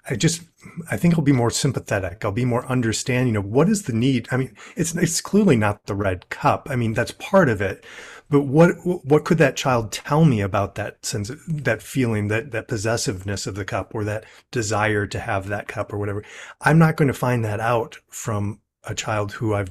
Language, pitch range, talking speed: English, 105-140 Hz, 220 wpm